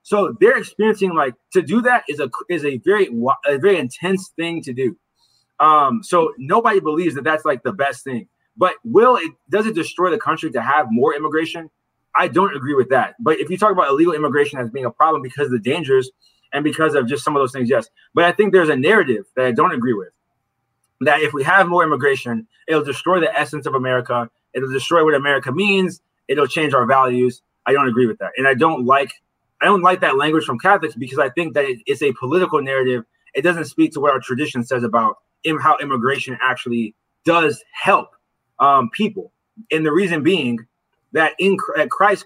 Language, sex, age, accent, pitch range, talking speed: English, male, 20-39, American, 130-180 Hz, 215 wpm